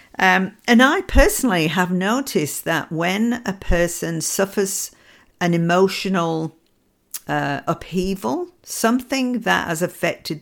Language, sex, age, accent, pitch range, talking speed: English, female, 50-69, British, 150-195 Hz, 110 wpm